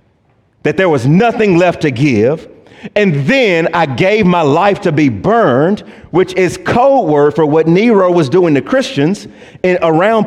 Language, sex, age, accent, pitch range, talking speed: English, male, 40-59, American, 135-215 Hz, 170 wpm